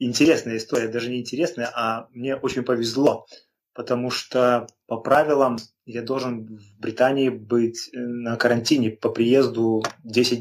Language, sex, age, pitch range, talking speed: Ukrainian, male, 20-39, 115-125 Hz, 135 wpm